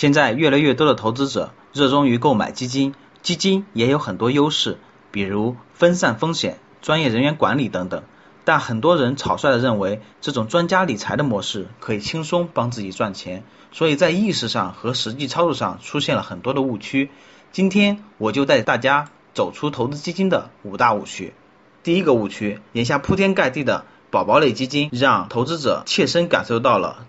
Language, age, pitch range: Chinese, 30-49, 115-175 Hz